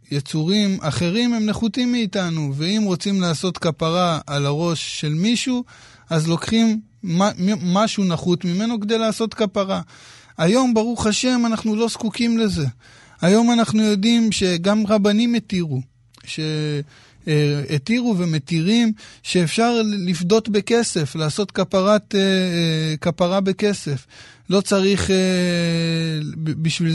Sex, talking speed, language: male, 100 wpm, Hebrew